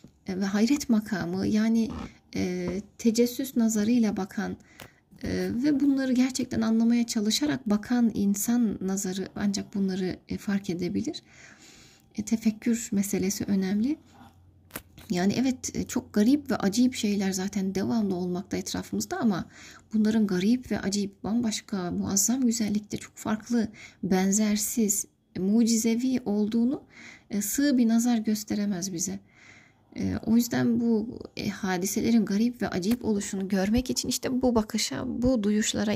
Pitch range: 195-235 Hz